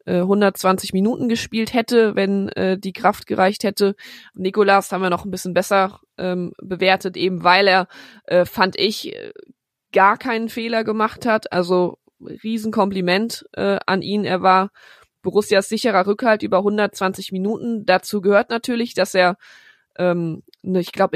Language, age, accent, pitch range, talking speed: German, 20-39, German, 185-210 Hz, 145 wpm